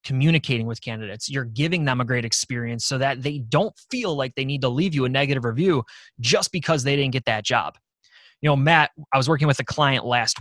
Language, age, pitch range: English, 20-39, 125-165 Hz